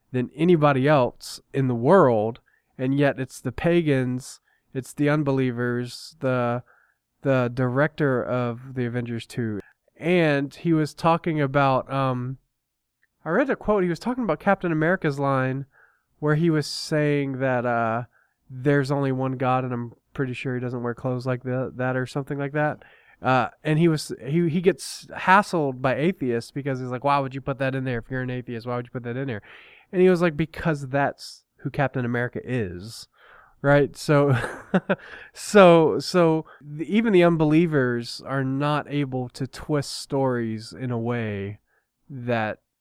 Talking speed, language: 170 wpm, English